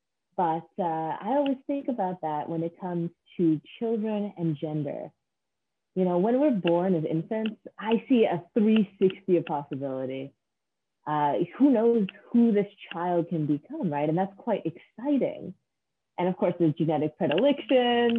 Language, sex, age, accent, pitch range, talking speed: English, female, 20-39, American, 160-205 Hz, 150 wpm